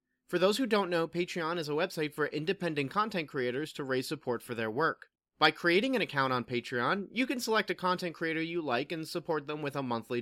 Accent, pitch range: American, 125-180 Hz